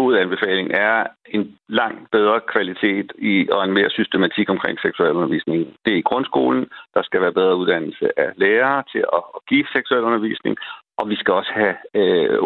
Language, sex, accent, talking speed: Danish, male, native, 175 wpm